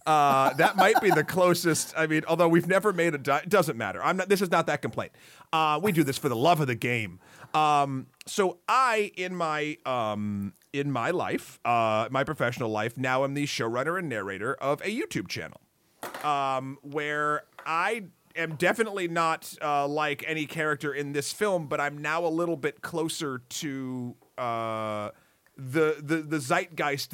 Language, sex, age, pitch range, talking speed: English, male, 40-59, 130-170 Hz, 180 wpm